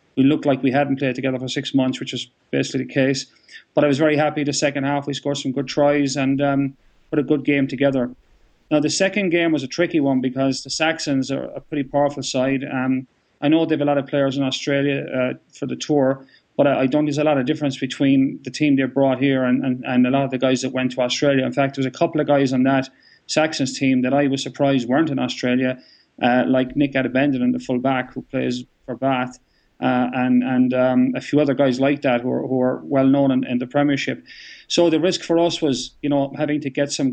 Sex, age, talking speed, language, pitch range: male, 30-49, 250 wpm, English, 130-145 Hz